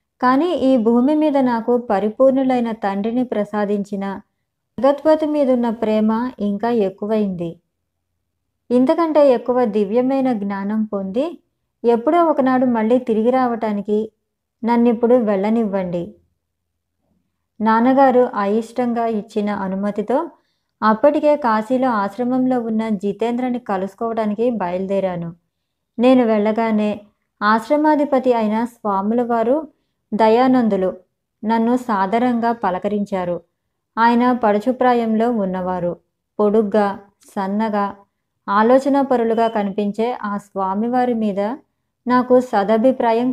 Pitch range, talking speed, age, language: 205-250 Hz, 80 wpm, 20-39, Telugu